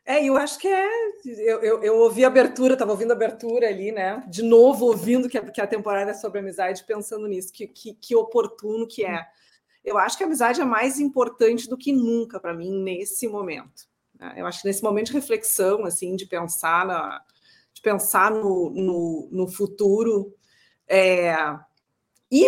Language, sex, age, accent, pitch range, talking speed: Portuguese, female, 40-59, Brazilian, 210-275 Hz, 190 wpm